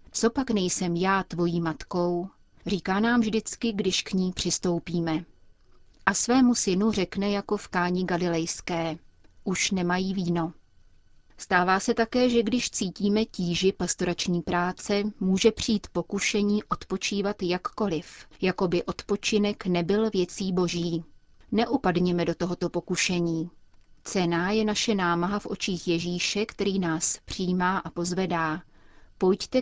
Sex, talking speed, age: female, 125 wpm, 30-49